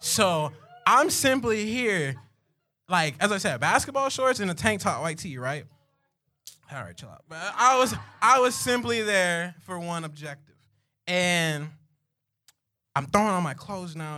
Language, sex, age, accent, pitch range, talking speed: English, male, 20-39, American, 130-180 Hz, 165 wpm